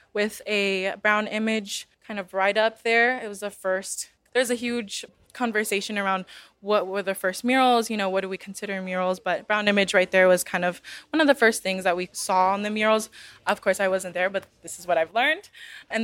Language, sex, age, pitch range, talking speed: English, female, 20-39, 195-225 Hz, 230 wpm